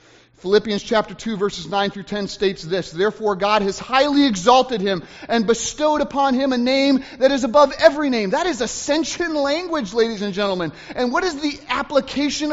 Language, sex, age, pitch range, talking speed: English, male, 30-49, 195-275 Hz, 180 wpm